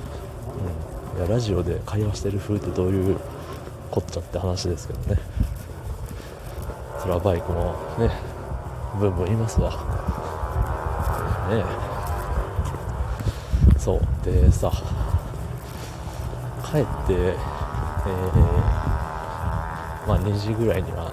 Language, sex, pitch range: Japanese, male, 85-100 Hz